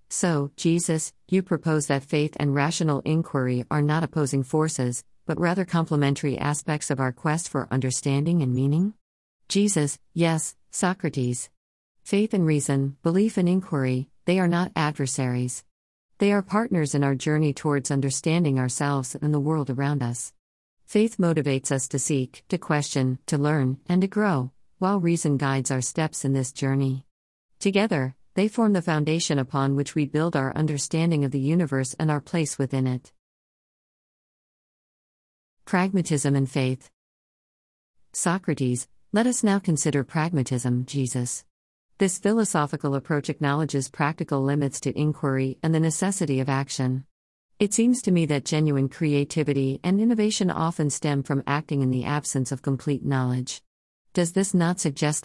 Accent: American